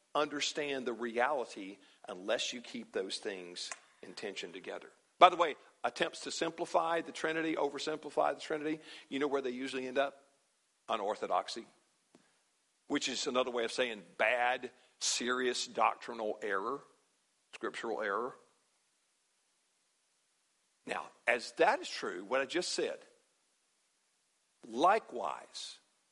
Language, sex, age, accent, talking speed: English, male, 50-69, American, 120 wpm